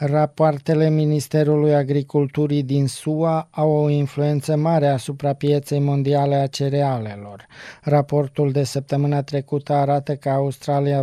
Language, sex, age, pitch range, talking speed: Romanian, male, 20-39, 140-150 Hz, 115 wpm